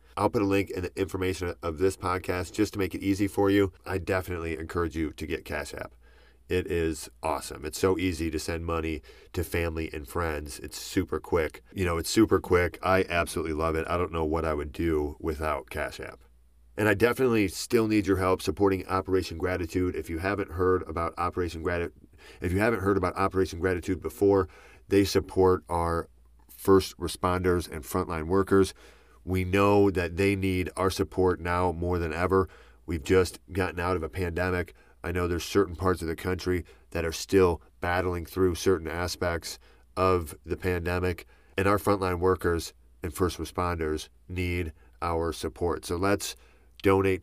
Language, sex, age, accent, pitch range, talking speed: English, male, 40-59, American, 80-95 Hz, 180 wpm